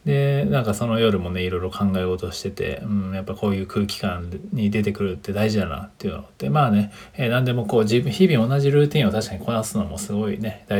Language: Japanese